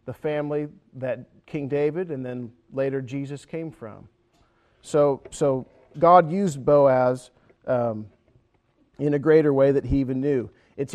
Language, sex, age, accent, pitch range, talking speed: English, male, 40-59, American, 120-155 Hz, 140 wpm